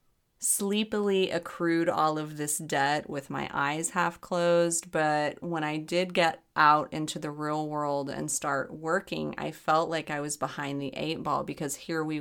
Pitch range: 150-180 Hz